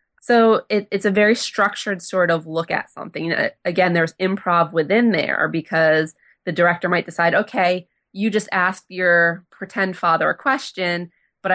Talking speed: 160 wpm